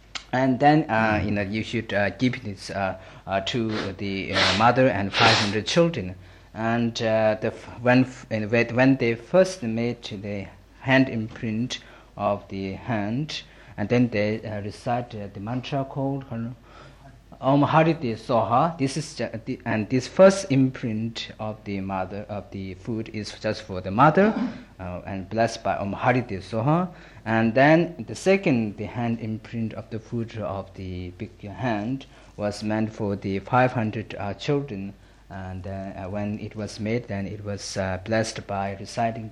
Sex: male